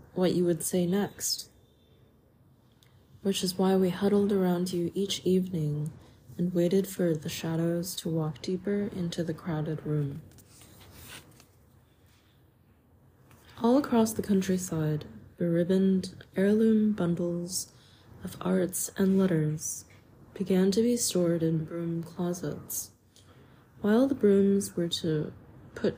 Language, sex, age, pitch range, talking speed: English, female, 20-39, 130-195 Hz, 120 wpm